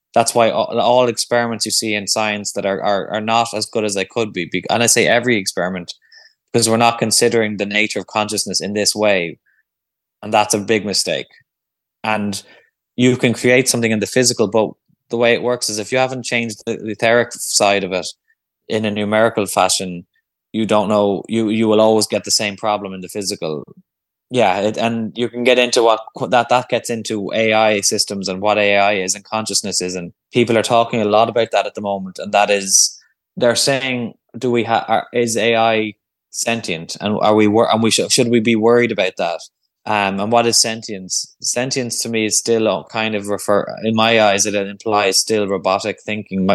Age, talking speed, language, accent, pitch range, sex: 20-39, 205 wpm, English, Irish, 100-115 Hz, male